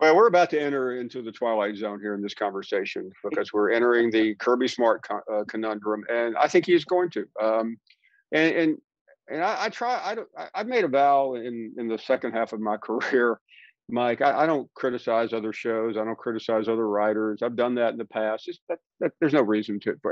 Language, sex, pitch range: English, male, 110-165 Hz